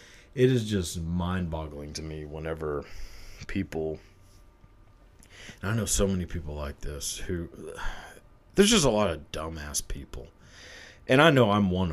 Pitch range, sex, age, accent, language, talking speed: 85-100 Hz, male, 30-49, American, English, 145 wpm